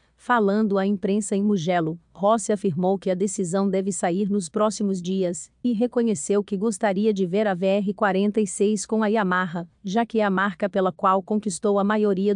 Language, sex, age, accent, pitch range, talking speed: Portuguese, female, 40-59, Brazilian, 185-215 Hz, 175 wpm